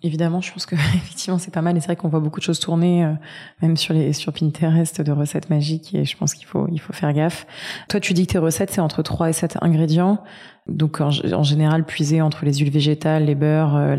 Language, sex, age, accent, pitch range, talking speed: French, female, 20-39, French, 150-175 Hz, 255 wpm